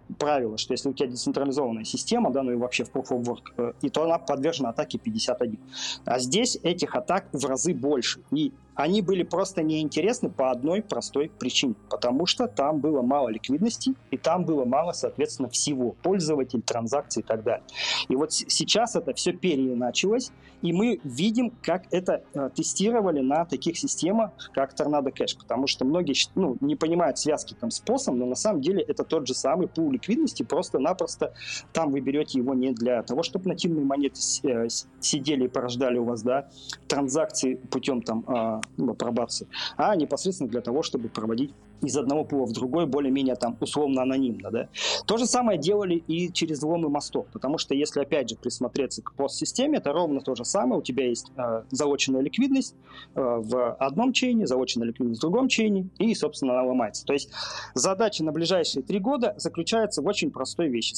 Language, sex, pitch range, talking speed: Russian, male, 125-190 Hz, 180 wpm